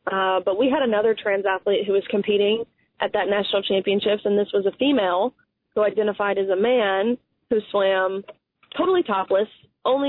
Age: 20-39